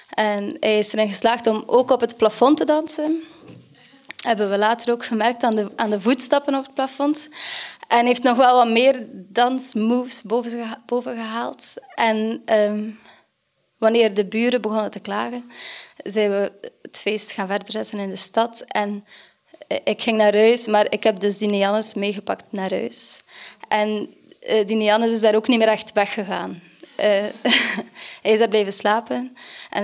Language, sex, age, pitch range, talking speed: Dutch, female, 20-39, 205-245 Hz, 170 wpm